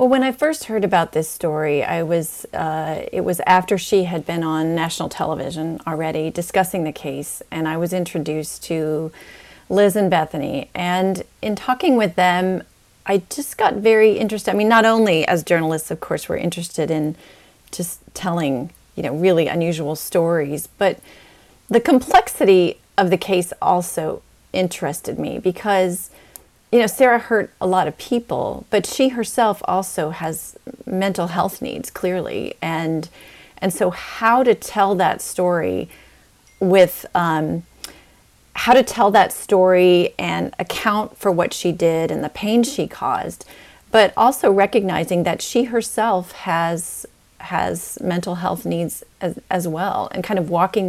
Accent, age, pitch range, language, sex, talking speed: American, 30-49, 160-210 Hz, English, female, 155 wpm